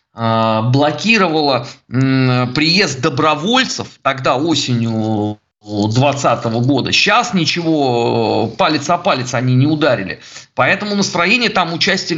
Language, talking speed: Russian, 95 wpm